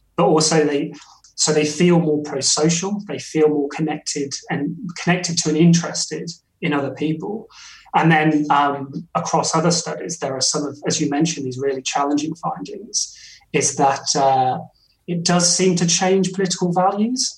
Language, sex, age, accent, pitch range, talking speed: English, male, 30-49, British, 140-165 Hz, 160 wpm